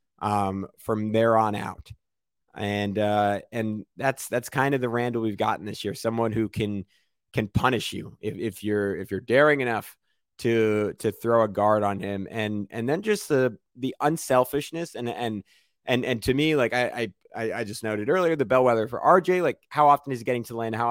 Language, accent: English, American